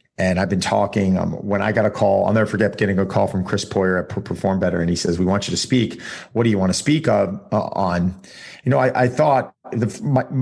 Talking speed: 270 wpm